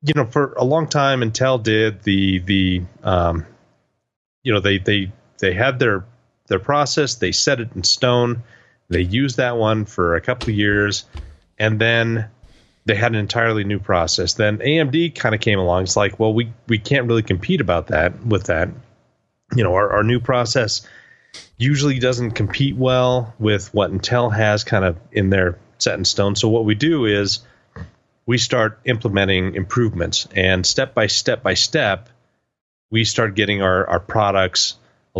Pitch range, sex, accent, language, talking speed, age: 95-120 Hz, male, American, English, 175 wpm, 30-49